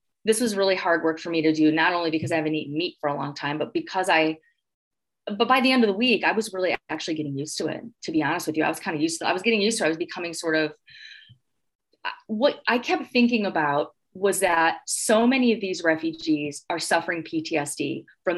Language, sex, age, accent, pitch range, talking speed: English, female, 30-49, American, 160-210 Hz, 245 wpm